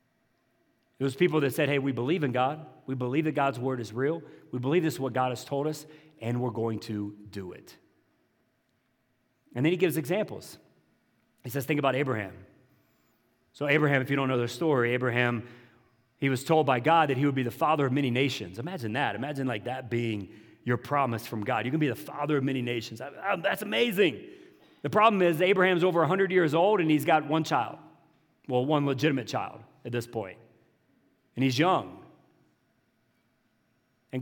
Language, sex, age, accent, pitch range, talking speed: English, male, 40-59, American, 125-165 Hz, 190 wpm